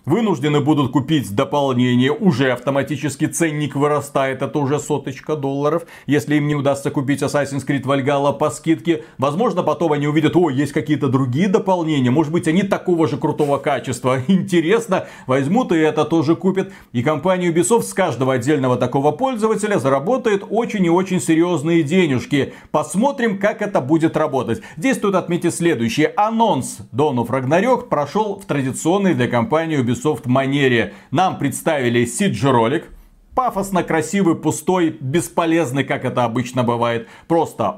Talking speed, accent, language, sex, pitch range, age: 145 wpm, native, Russian, male, 140-175 Hz, 40-59